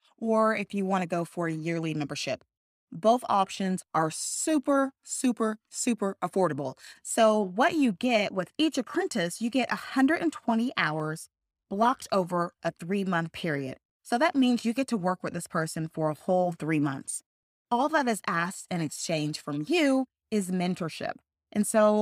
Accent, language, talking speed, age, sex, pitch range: American, English, 165 wpm, 20-39, female, 160-230 Hz